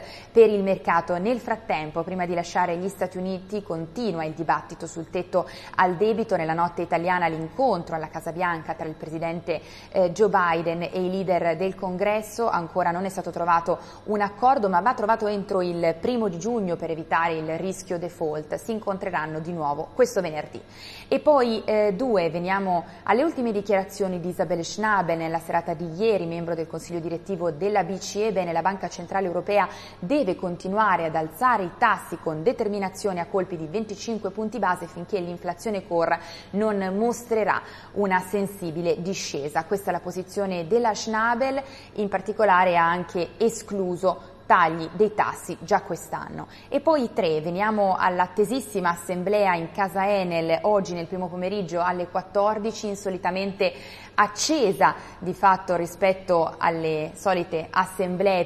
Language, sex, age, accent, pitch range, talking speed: Italian, female, 20-39, native, 170-205 Hz, 150 wpm